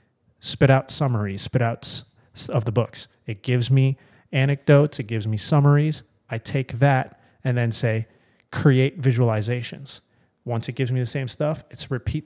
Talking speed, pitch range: 160 wpm, 115-135 Hz